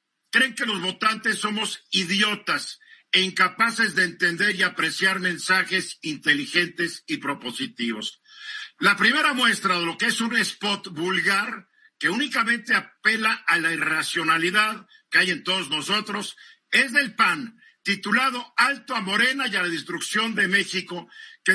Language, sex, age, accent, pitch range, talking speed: Spanish, male, 50-69, Mexican, 185-245 Hz, 140 wpm